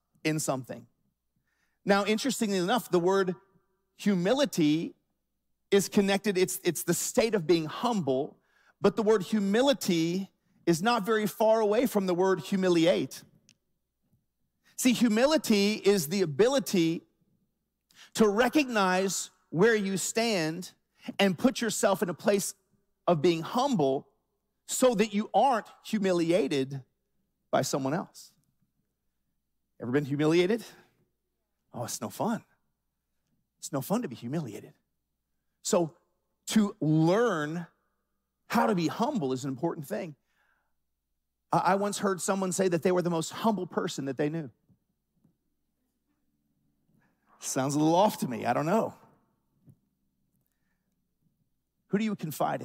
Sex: male